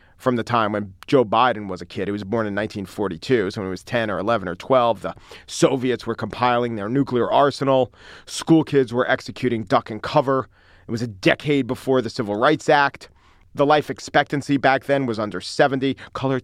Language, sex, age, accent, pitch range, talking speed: English, male, 40-59, American, 100-140 Hz, 200 wpm